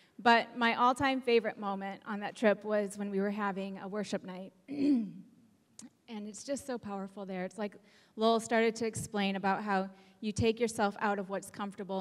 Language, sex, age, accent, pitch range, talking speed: English, female, 30-49, American, 195-230 Hz, 185 wpm